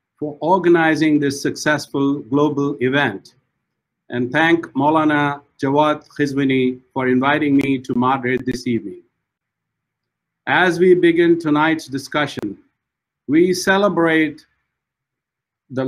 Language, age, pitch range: English, 50-69, 130-160 Hz